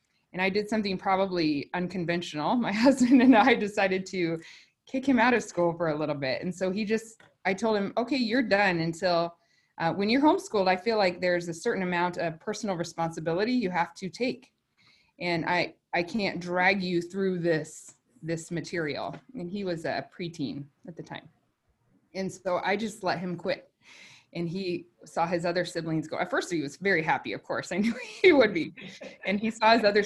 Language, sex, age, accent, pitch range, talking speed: English, female, 20-39, American, 170-210 Hz, 200 wpm